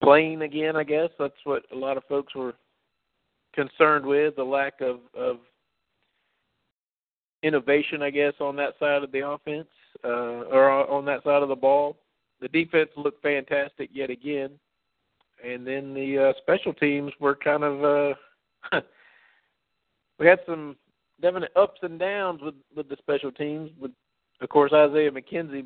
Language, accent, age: English, American, 50-69